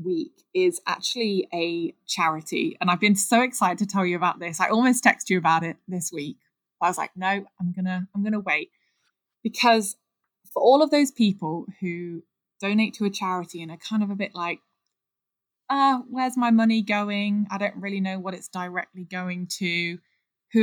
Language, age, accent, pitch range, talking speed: English, 10-29, British, 170-215 Hz, 190 wpm